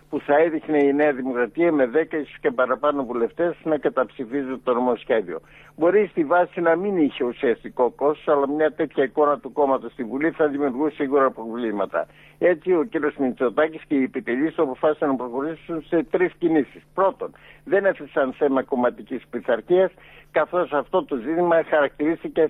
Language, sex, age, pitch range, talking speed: Greek, male, 60-79, 135-175 Hz, 155 wpm